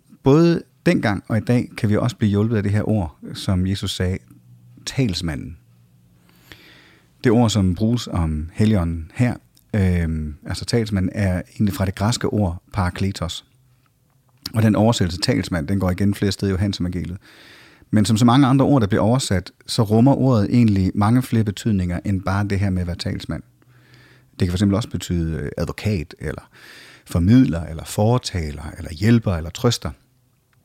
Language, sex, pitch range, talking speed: English, male, 95-130 Hz, 165 wpm